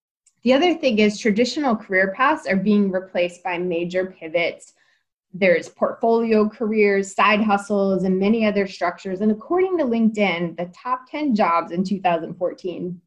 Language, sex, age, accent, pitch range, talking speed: English, female, 20-39, American, 175-230 Hz, 145 wpm